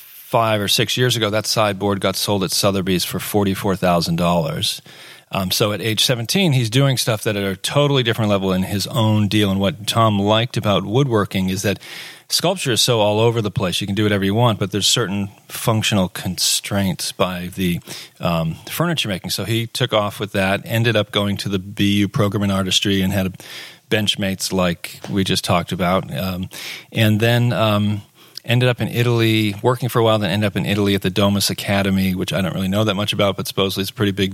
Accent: American